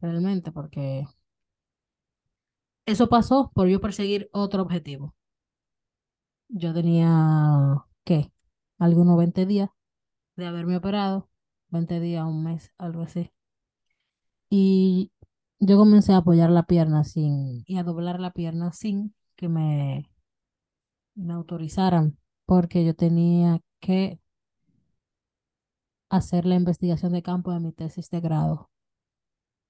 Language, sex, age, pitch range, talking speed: Spanish, female, 20-39, 160-195 Hz, 115 wpm